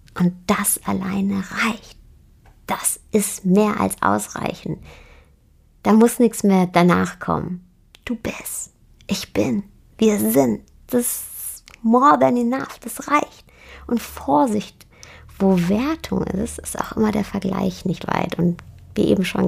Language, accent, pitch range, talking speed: German, German, 175-240 Hz, 135 wpm